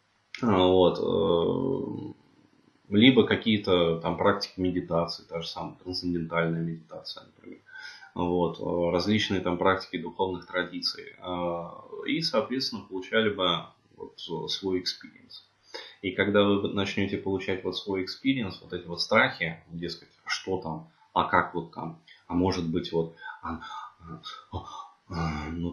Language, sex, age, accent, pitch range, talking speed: Russian, male, 20-39, native, 85-100 Hz, 115 wpm